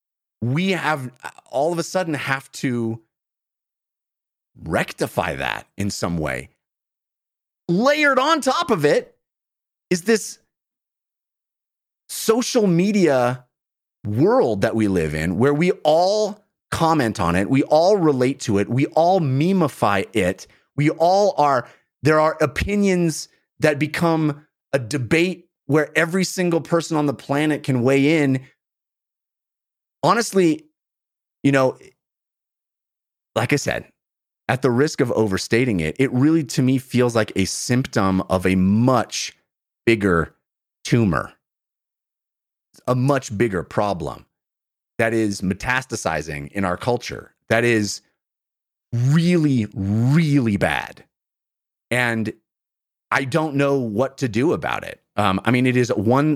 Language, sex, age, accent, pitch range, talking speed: English, male, 30-49, American, 110-160 Hz, 125 wpm